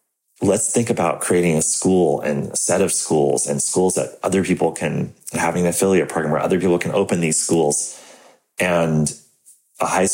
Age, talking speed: 30-49, 185 wpm